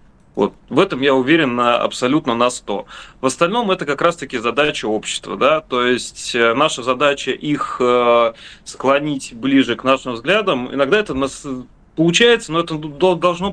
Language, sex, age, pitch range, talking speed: Russian, male, 30-49, 125-155 Hz, 150 wpm